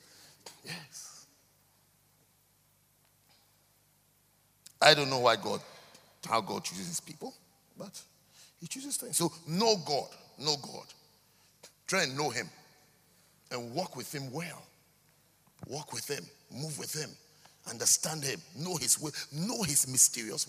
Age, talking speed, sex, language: 50-69, 125 wpm, male, English